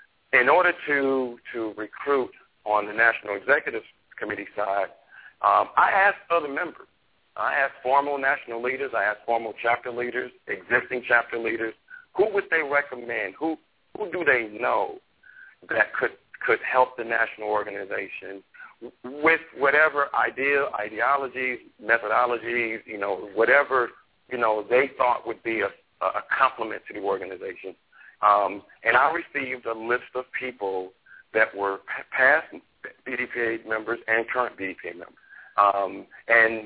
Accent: American